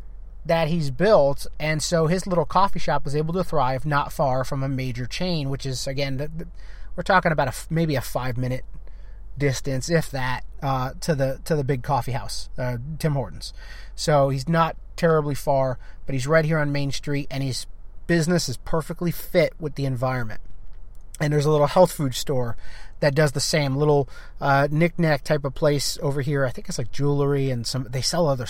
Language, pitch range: English, 135-170 Hz